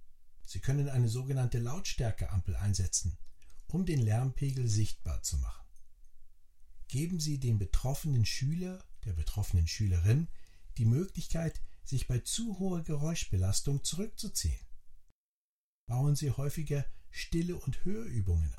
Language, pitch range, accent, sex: German, 85-140 Hz, German, male